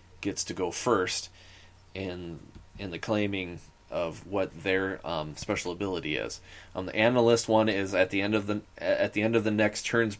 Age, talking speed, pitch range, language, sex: 20-39, 190 wpm, 95-105 Hz, English, male